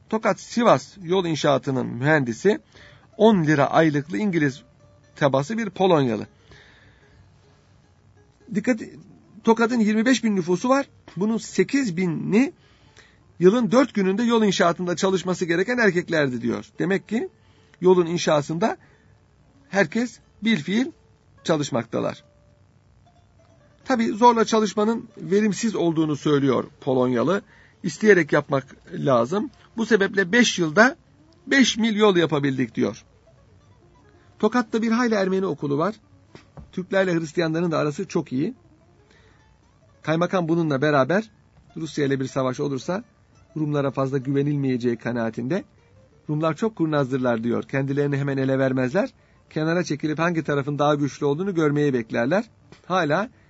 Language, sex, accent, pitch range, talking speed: Turkish, male, native, 140-205 Hz, 110 wpm